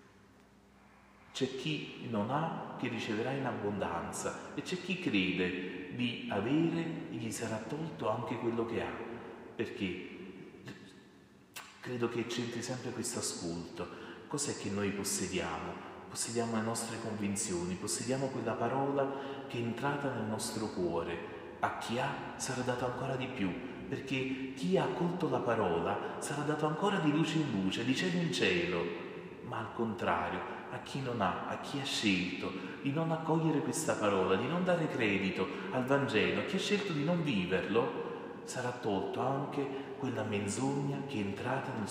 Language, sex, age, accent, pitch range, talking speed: Italian, male, 40-59, native, 100-135 Hz, 155 wpm